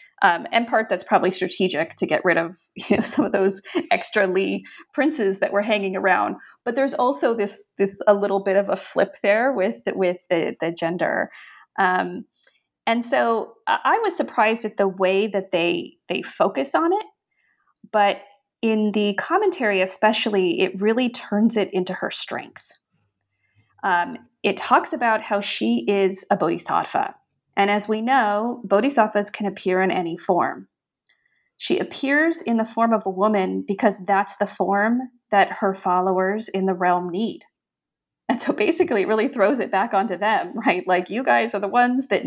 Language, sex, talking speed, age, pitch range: English, female, 175 wpm, 30-49, 190-230 Hz